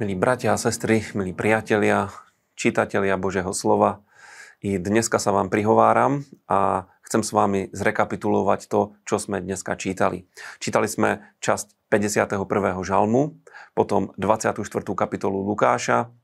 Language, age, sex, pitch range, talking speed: Slovak, 30-49, male, 100-110 Hz, 120 wpm